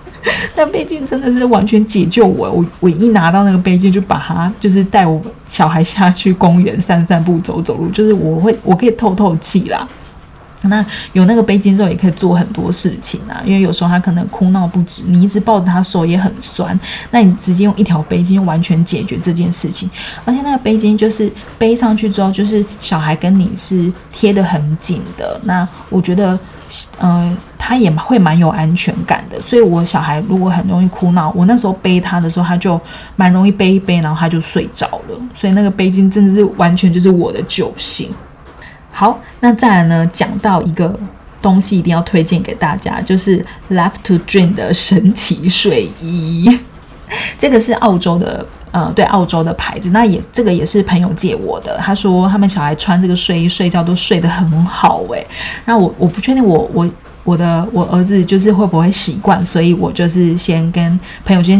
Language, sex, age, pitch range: Chinese, female, 20-39, 175-205 Hz